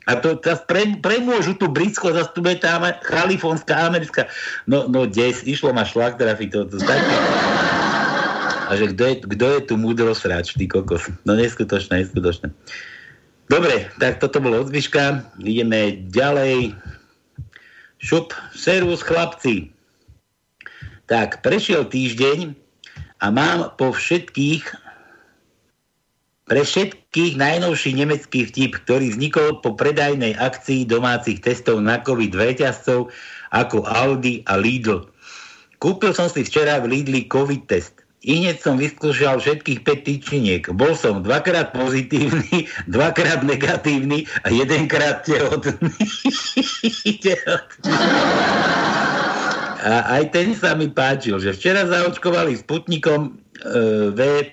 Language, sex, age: Slovak, male, 60-79